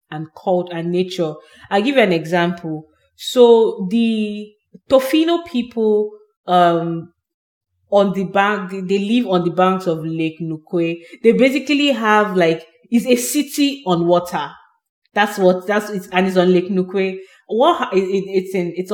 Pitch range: 180-230 Hz